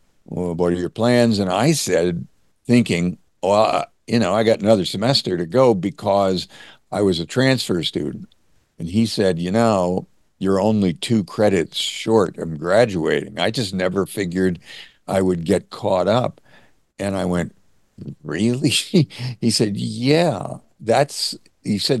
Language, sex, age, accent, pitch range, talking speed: English, male, 60-79, American, 90-115 Hz, 145 wpm